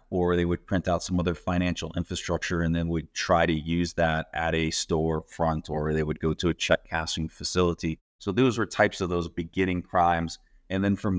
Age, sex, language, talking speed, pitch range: 30-49, male, English, 215 wpm, 80-90 Hz